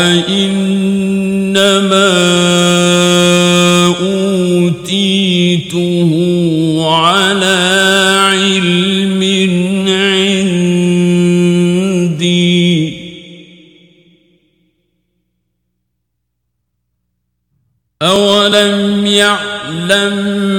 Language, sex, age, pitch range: Arabic, male, 50-69, 160-195 Hz